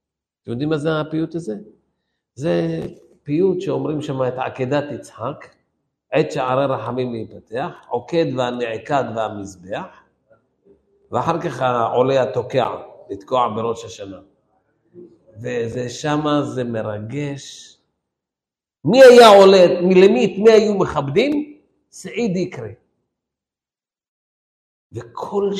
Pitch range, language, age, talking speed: 140-235 Hz, Hebrew, 50-69, 95 wpm